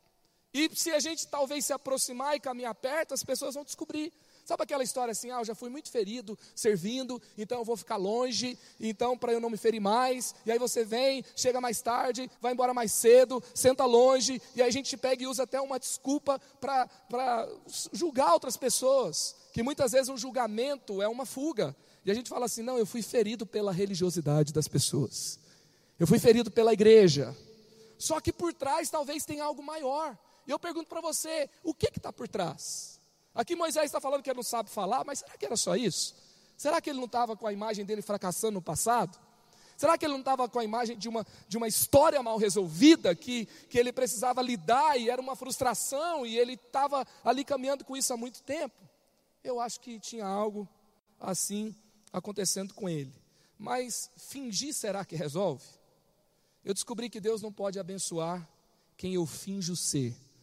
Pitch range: 210-270 Hz